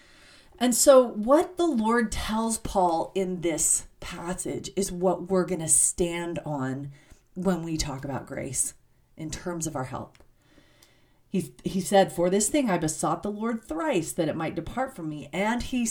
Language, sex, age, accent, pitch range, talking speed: English, female, 40-59, American, 155-210 Hz, 175 wpm